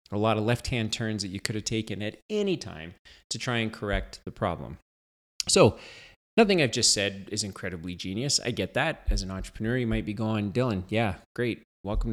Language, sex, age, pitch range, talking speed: English, male, 30-49, 100-130 Hz, 210 wpm